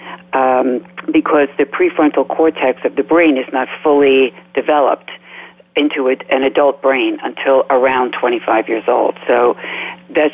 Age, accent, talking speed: 60-79, American, 135 wpm